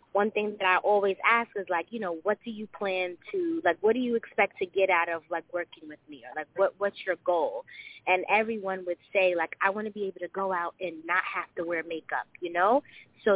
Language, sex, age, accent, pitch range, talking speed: English, female, 20-39, American, 175-210 Hz, 250 wpm